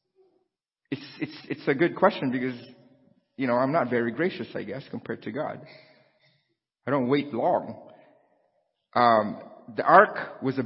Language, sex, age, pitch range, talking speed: English, male, 50-69, 125-160 Hz, 145 wpm